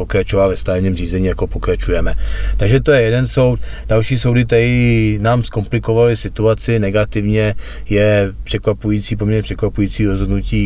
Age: 30-49